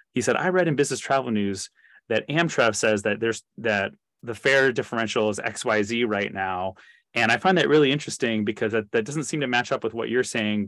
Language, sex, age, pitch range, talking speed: English, male, 30-49, 110-180 Hz, 220 wpm